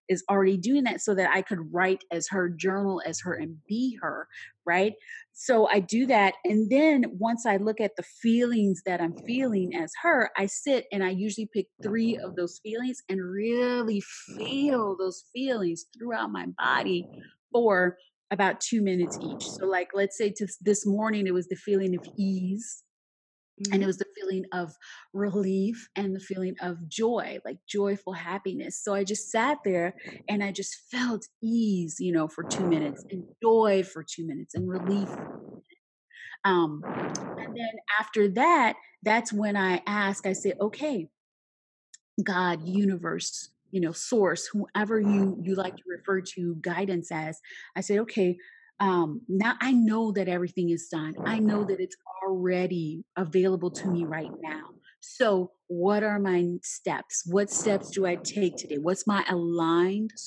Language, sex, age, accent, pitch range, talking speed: English, female, 30-49, American, 180-215 Hz, 170 wpm